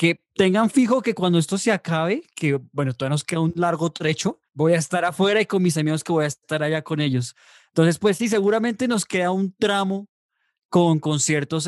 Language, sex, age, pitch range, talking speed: English, male, 20-39, 135-175 Hz, 210 wpm